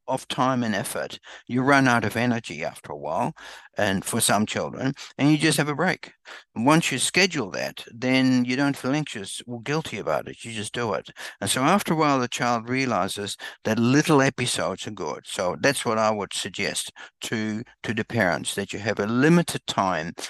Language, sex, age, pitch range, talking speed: English, male, 60-79, 110-145 Hz, 200 wpm